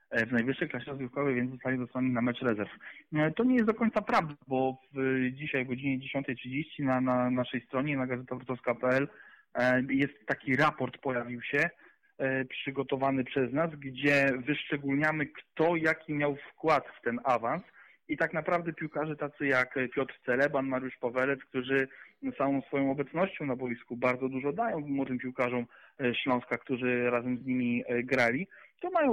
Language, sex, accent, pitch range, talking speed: Polish, male, native, 130-150 Hz, 150 wpm